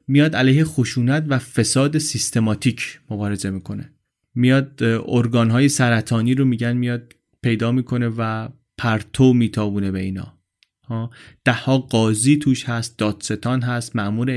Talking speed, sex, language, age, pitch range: 120 wpm, male, Persian, 30-49, 115-135 Hz